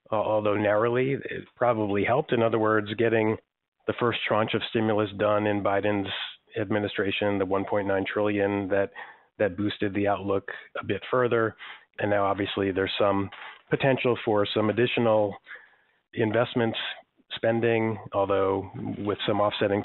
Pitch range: 100-115 Hz